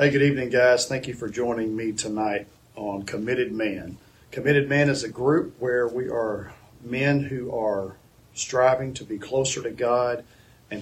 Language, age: English, 40-59